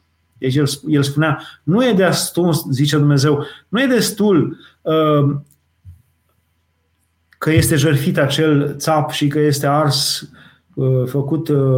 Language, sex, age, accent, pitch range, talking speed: Romanian, male, 30-49, native, 130-165 Hz, 105 wpm